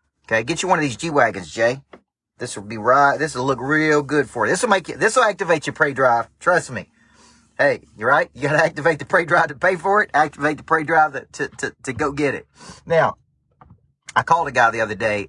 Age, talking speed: 40-59, 235 wpm